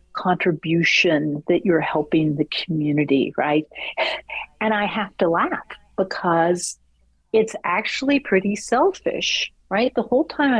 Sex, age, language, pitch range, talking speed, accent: female, 50-69, English, 165-205 Hz, 120 wpm, American